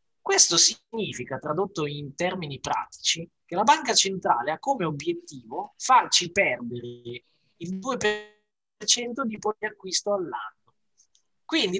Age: 20-39